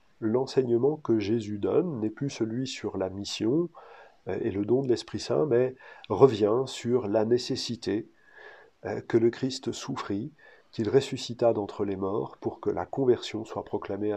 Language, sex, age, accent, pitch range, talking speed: French, male, 40-59, French, 110-145 Hz, 150 wpm